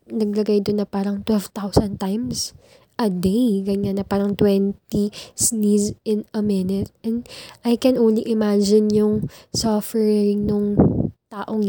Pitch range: 210-235 Hz